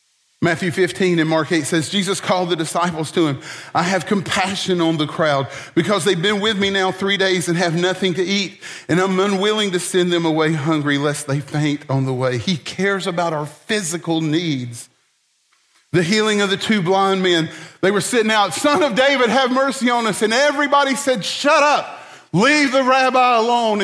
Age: 40-59